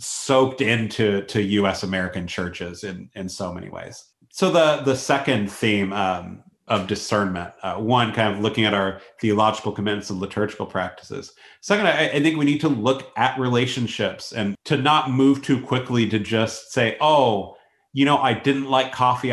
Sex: male